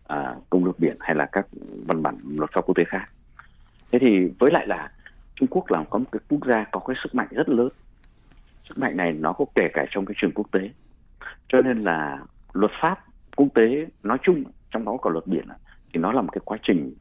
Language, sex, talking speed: Vietnamese, male, 230 wpm